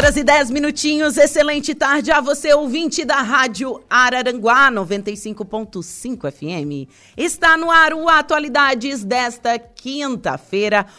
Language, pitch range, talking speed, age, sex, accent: Portuguese, 185-275 Hz, 115 wpm, 30-49, female, Brazilian